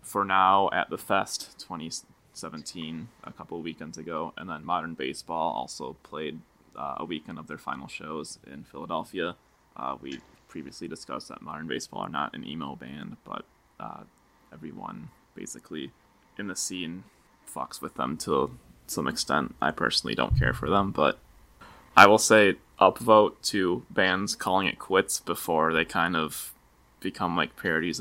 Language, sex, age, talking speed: English, male, 20-39, 155 wpm